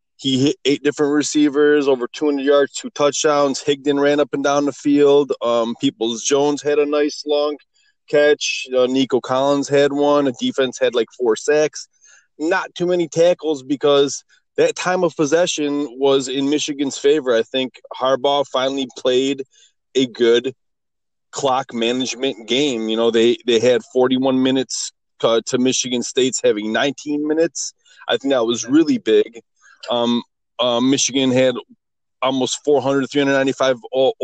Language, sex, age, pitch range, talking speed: English, male, 20-39, 130-150 Hz, 145 wpm